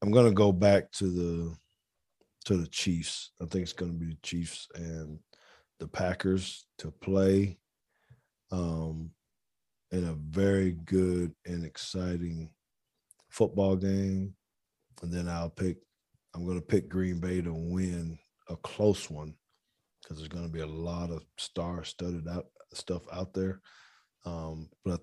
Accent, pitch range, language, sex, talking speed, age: American, 80-100 Hz, English, male, 145 wpm, 40-59